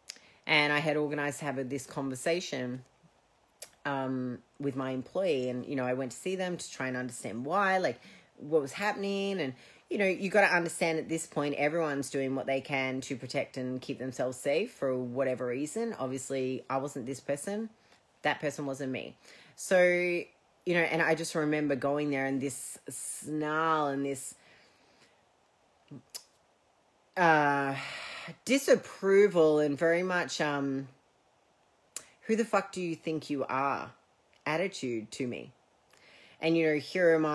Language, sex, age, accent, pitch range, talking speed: English, female, 30-49, Australian, 135-165 Hz, 155 wpm